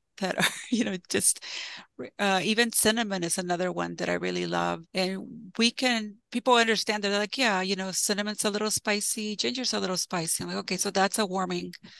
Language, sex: English, female